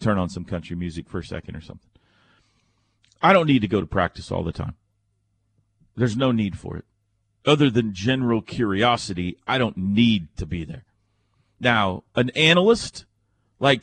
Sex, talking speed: male, 170 wpm